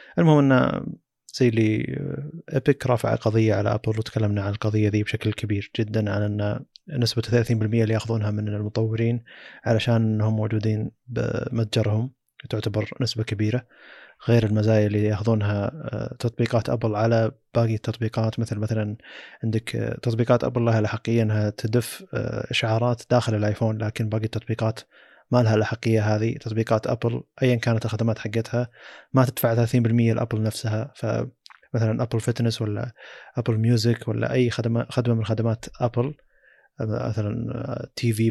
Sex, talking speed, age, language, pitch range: male, 130 wpm, 20-39, Arabic, 110-120 Hz